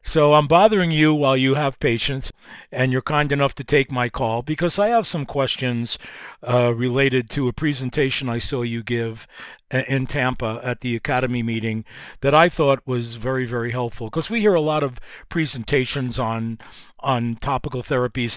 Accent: American